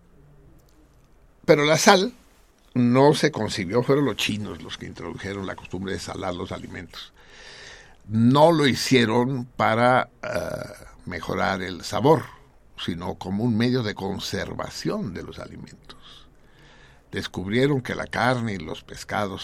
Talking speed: 130 wpm